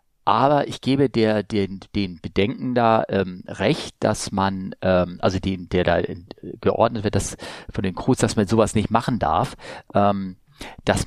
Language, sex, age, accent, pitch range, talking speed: German, male, 40-59, German, 95-120 Hz, 170 wpm